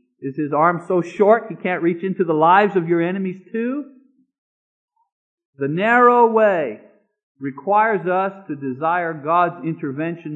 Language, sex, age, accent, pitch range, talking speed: English, male, 50-69, American, 165-225 Hz, 140 wpm